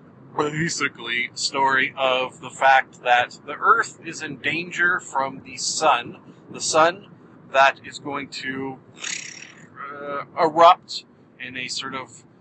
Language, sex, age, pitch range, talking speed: English, male, 40-59, 135-165 Hz, 125 wpm